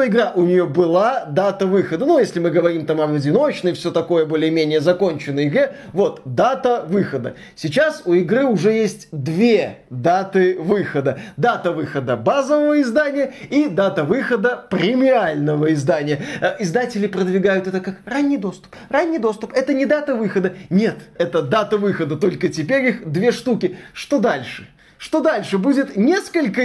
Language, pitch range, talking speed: Russian, 180-255 Hz, 145 wpm